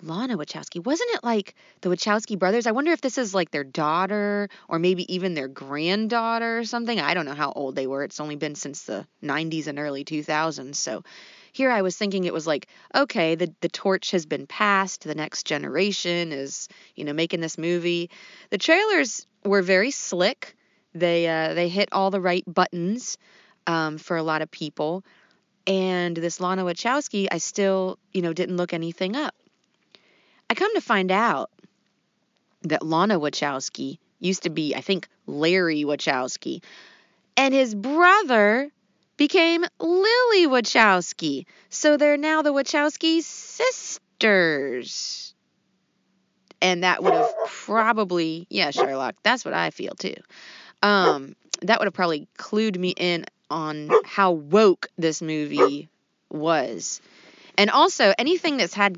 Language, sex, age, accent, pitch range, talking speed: English, female, 30-49, American, 165-225 Hz, 155 wpm